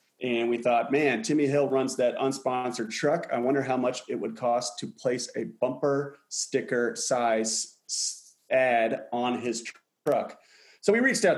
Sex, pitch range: male, 115-140 Hz